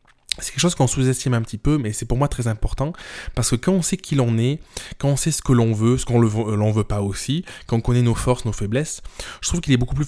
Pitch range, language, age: 110-135 Hz, French, 20-39